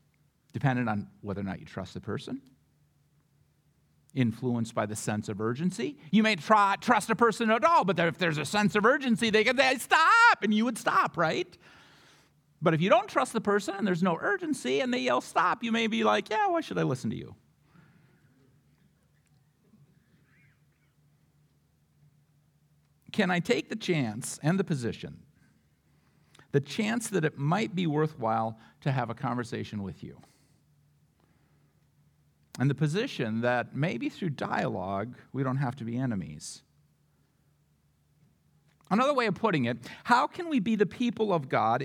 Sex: male